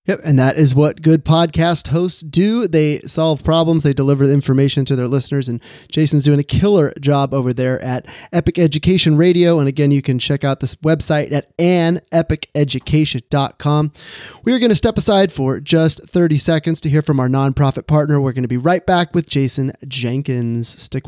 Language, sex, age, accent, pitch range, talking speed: English, male, 30-49, American, 115-155 Hz, 190 wpm